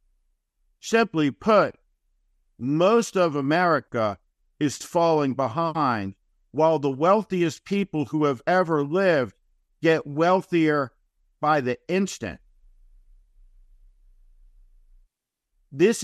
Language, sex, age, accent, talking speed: English, male, 50-69, American, 80 wpm